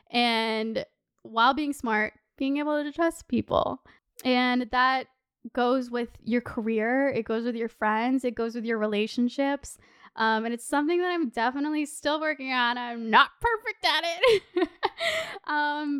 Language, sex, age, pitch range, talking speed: English, female, 10-29, 235-300 Hz, 155 wpm